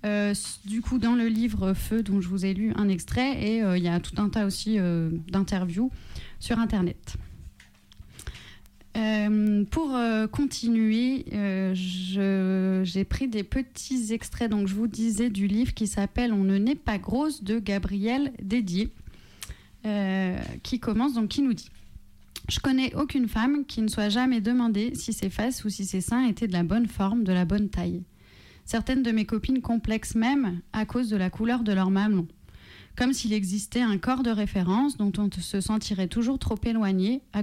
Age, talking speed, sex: 30-49, 190 wpm, female